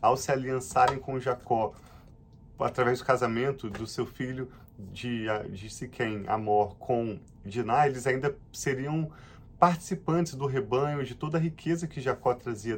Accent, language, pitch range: Brazilian, Portuguese, 115-145 Hz